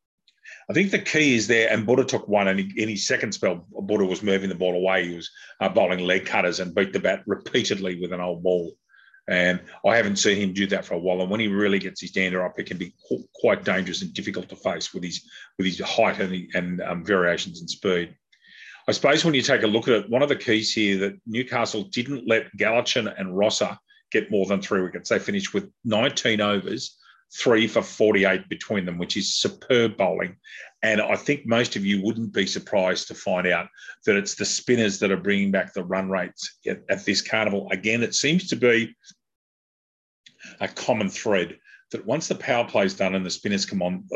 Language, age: English, 40-59